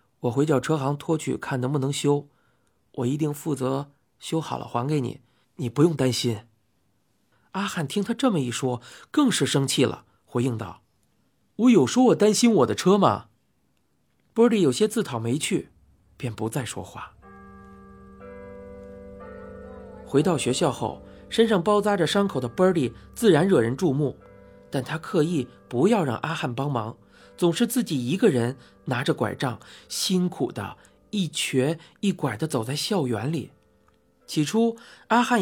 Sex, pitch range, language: male, 120-190 Hz, Chinese